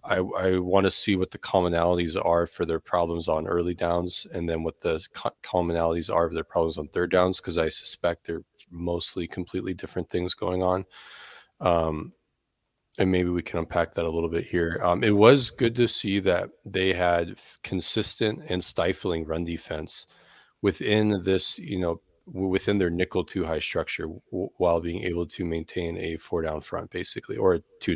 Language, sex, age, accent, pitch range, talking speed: English, male, 30-49, American, 85-105 Hz, 180 wpm